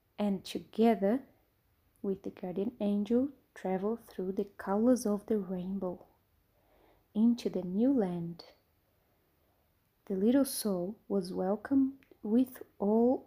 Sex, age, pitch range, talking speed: female, 20-39, 195-250 Hz, 110 wpm